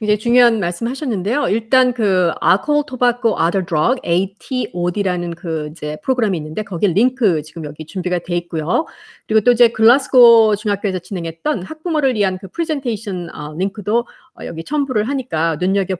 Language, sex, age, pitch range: Korean, female, 40-59, 170-240 Hz